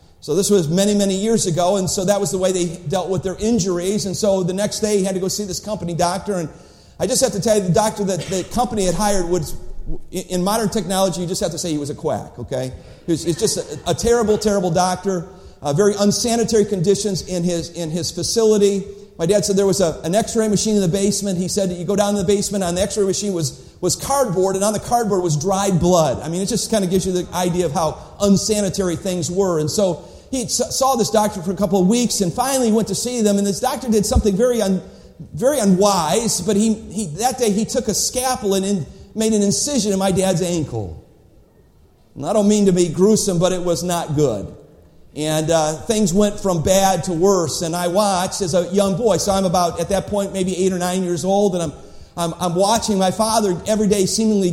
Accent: American